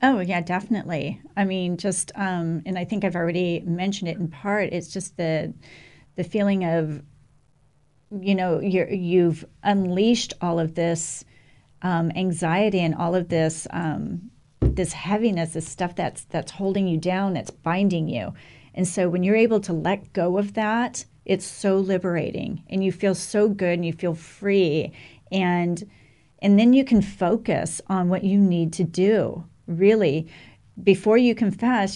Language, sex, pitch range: English, female, 165-195 Hz